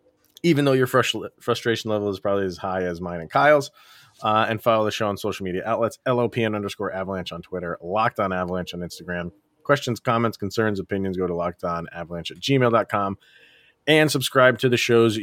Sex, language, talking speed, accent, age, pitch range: male, English, 185 wpm, American, 30-49, 100-140 Hz